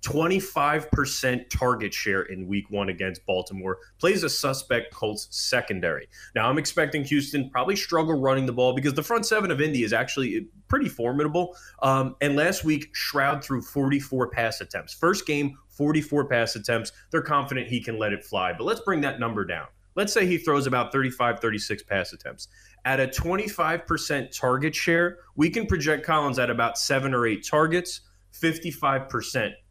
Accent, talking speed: American, 170 wpm